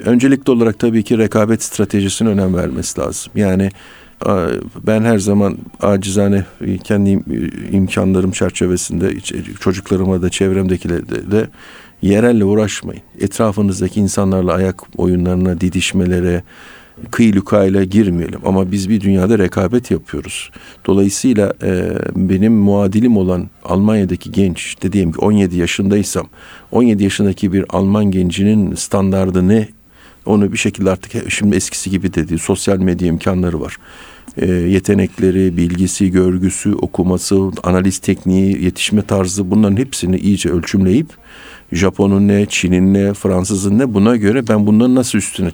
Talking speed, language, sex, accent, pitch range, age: 115 wpm, Turkish, male, native, 95-105 Hz, 50-69